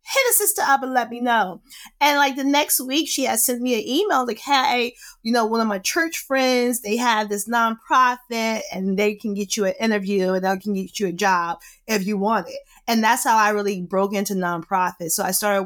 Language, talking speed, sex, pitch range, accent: English, 235 wpm, female, 185-230 Hz, American